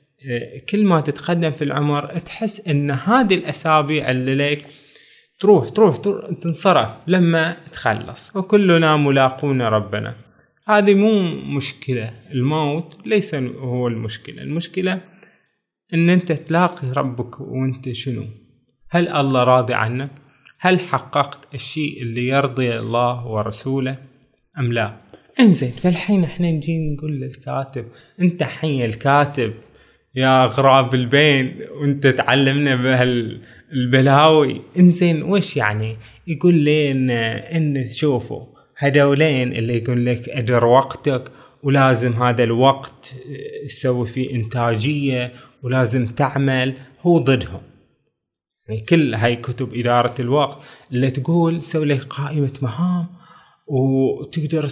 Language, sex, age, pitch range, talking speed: Arabic, male, 20-39, 125-160 Hz, 110 wpm